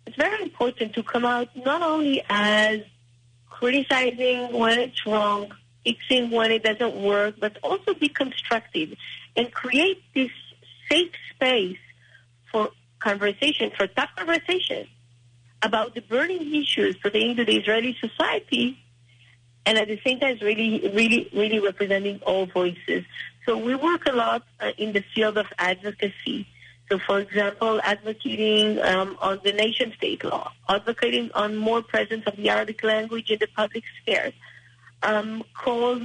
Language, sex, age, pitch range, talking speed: English, female, 30-49, 200-240 Hz, 140 wpm